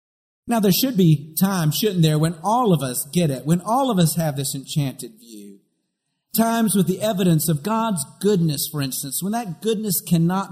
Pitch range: 145-190 Hz